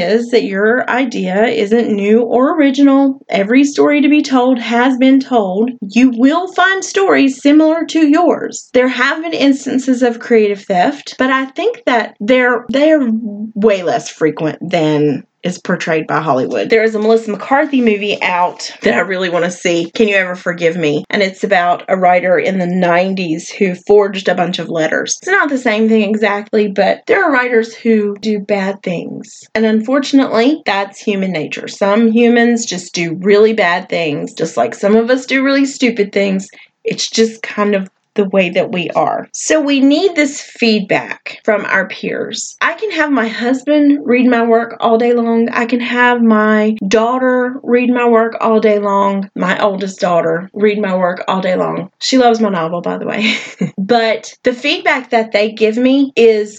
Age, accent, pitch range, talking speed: 30-49, American, 200-255 Hz, 185 wpm